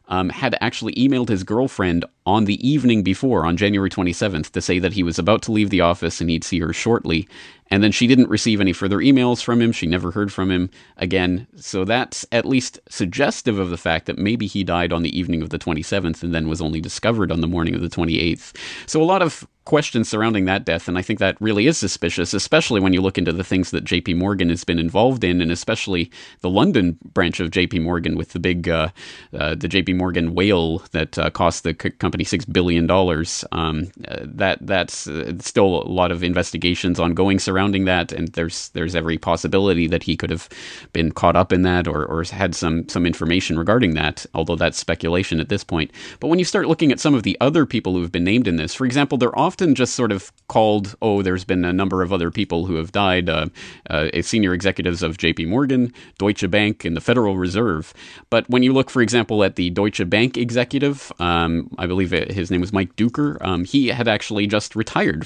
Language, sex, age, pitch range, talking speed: English, male, 30-49, 85-110 Hz, 220 wpm